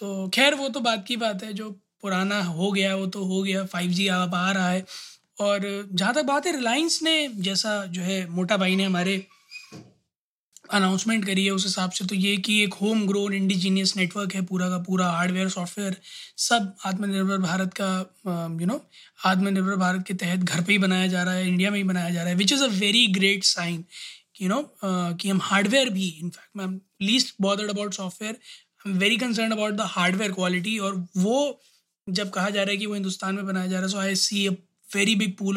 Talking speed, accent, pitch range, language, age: 210 wpm, native, 185-205 Hz, Hindi, 20-39